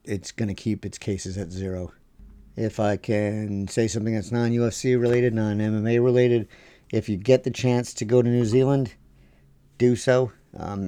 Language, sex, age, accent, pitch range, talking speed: English, male, 50-69, American, 100-115 Hz, 180 wpm